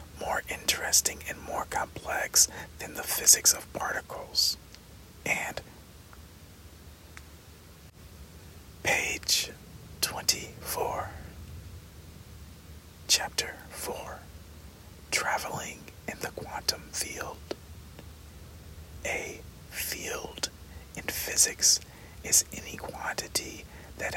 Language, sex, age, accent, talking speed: English, male, 40-59, American, 70 wpm